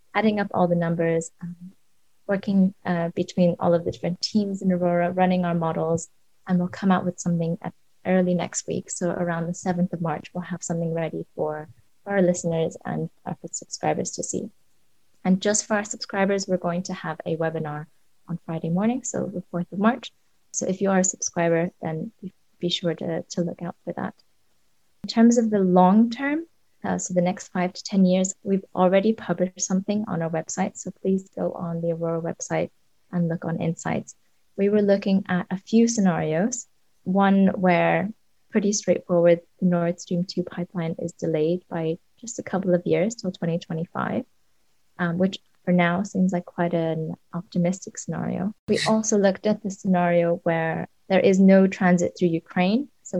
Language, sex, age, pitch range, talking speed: English, female, 20-39, 170-195 Hz, 185 wpm